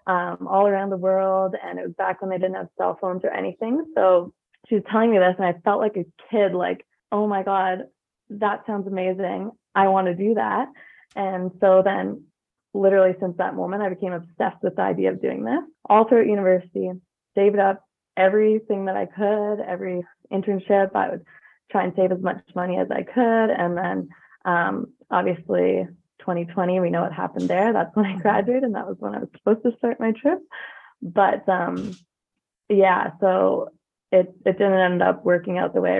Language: English